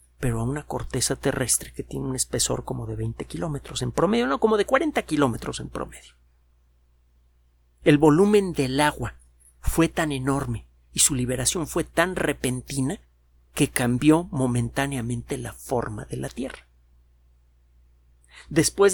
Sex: male